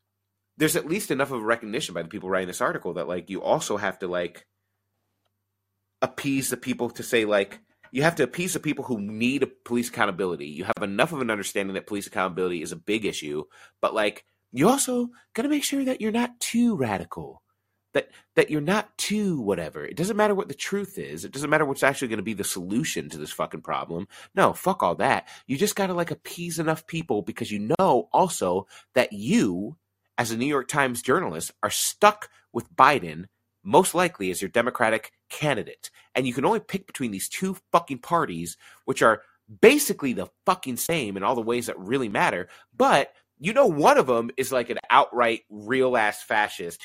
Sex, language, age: male, English, 30-49